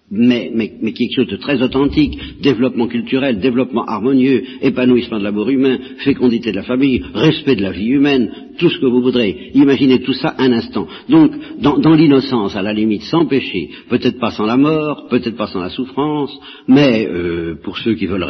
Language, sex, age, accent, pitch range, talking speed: French, male, 60-79, French, 100-130 Hz, 195 wpm